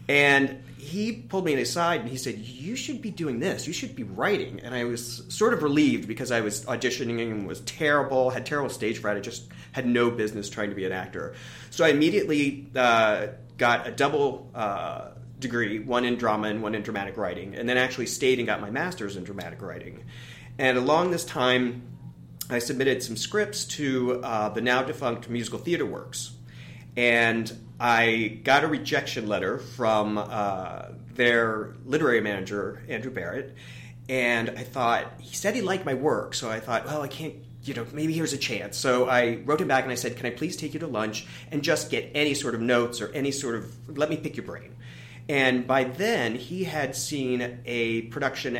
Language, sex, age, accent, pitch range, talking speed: English, male, 30-49, American, 110-130 Hz, 200 wpm